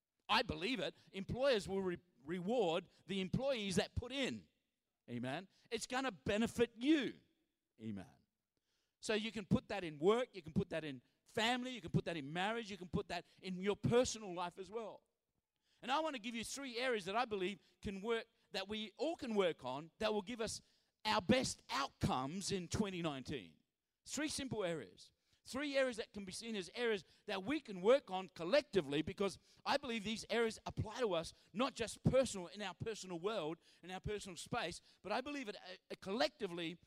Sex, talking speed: male, 190 wpm